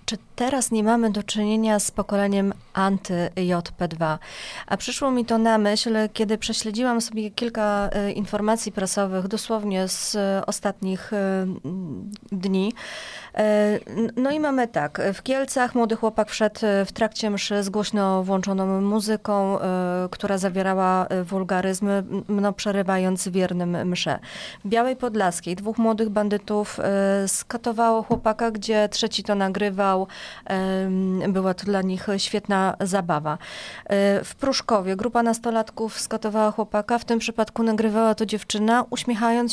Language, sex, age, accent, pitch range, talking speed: Polish, female, 30-49, native, 190-220 Hz, 120 wpm